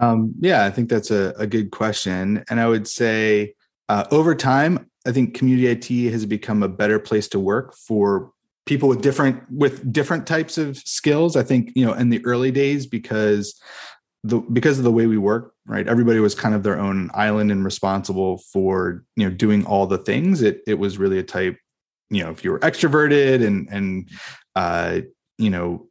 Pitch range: 100-125 Hz